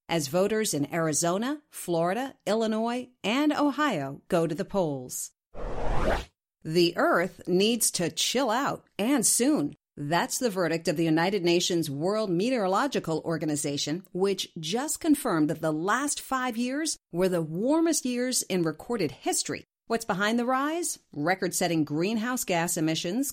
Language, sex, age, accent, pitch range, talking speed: English, female, 50-69, American, 165-235 Hz, 135 wpm